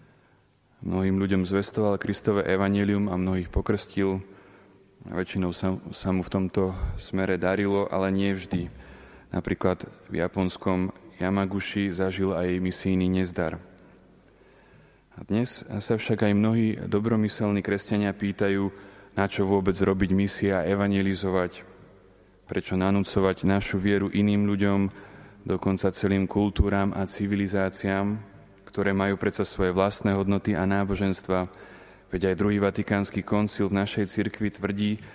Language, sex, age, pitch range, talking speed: Slovak, male, 20-39, 95-100 Hz, 125 wpm